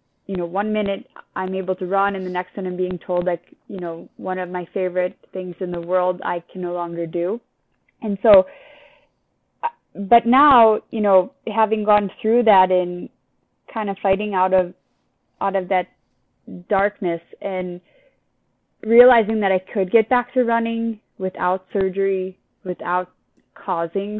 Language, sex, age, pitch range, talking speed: English, female, 20-39, 185-220 Hz, 160 wpm